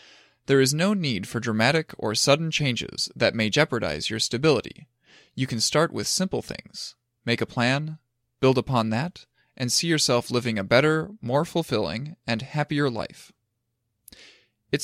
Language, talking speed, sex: English, 155 wpm, male